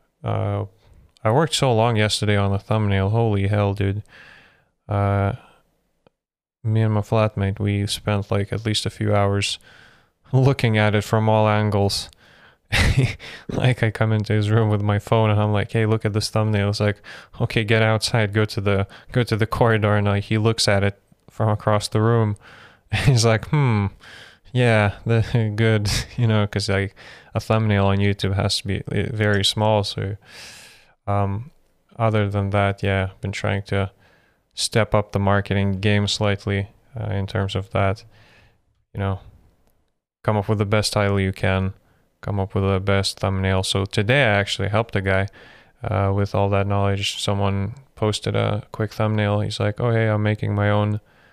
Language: English